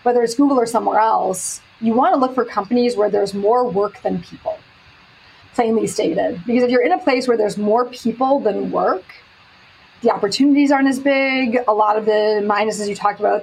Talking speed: 200 wpm